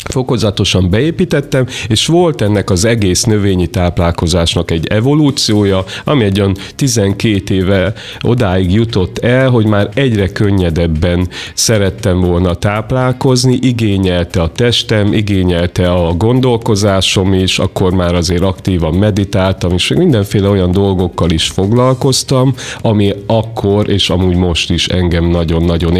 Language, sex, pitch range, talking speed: Hungarian, male, 90-115 Hz, 120 wpm